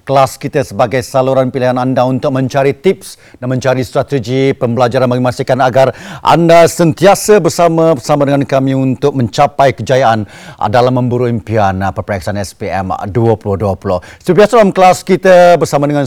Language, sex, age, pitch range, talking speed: Malay, male, 40-59, 125-170 Hz, 135 wpm